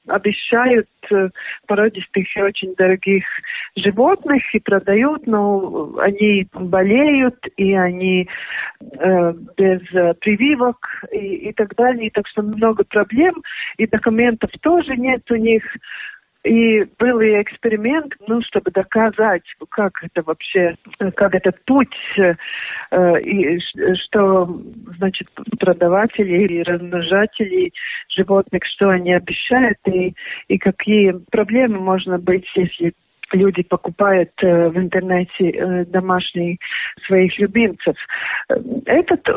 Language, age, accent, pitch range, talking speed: Russian, 50-69, native, 185-225 Hz, 105 wpm